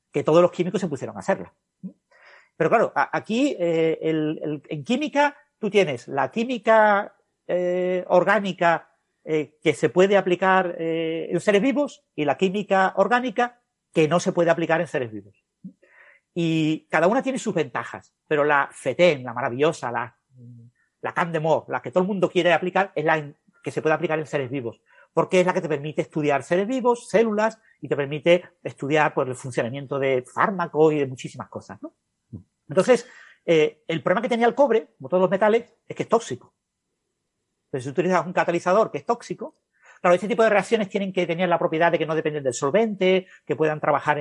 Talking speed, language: 190 wpm, Spanish